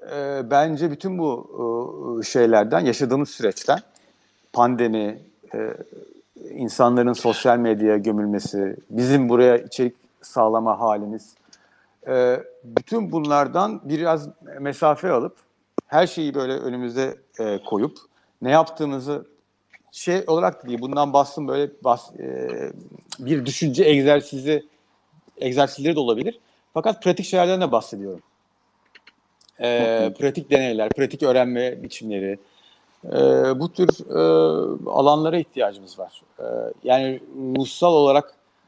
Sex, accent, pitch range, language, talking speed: male, native, 120-170 Hz, Turkish, 95 wpm